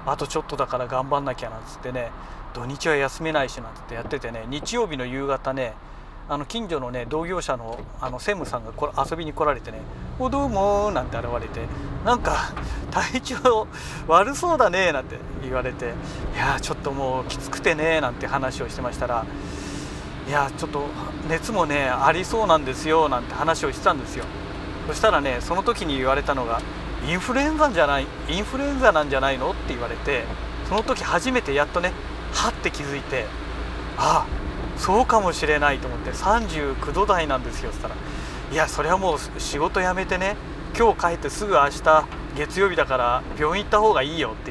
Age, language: 40-59, Japanese